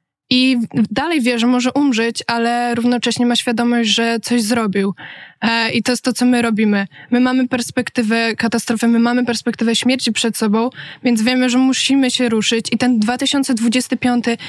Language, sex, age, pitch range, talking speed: Polish, female, 20-39, 225-255 Hz, 160 wpm